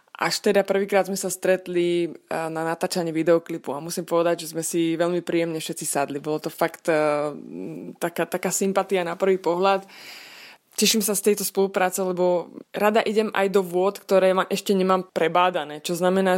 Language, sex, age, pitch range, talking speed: Slovak, female, 20-39, 170-190 Hz, 165 wpm